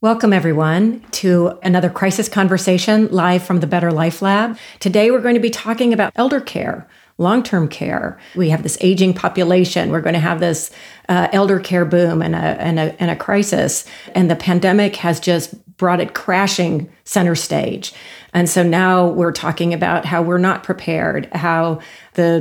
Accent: American